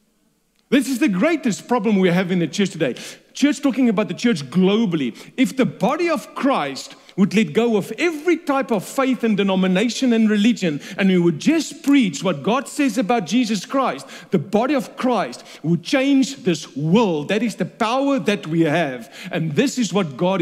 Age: 40-59